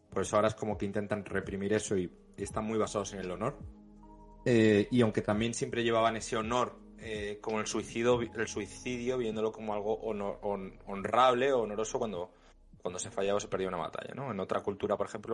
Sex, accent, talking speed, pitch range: male, Spanish, 200 wpm, 105-130 Hz